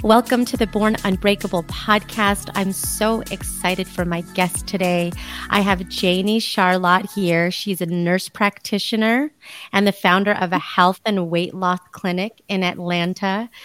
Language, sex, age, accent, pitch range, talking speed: English, female, 30-49, American, 180-205 Hz, 150 wpm